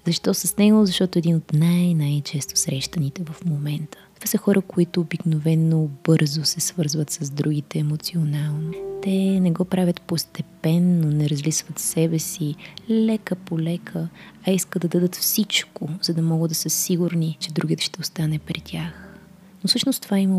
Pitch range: 165-190 Hz